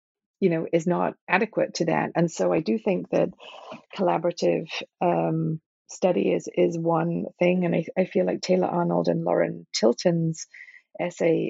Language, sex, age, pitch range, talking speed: English, female, 40-59, 165-195 Hz, 160 wpm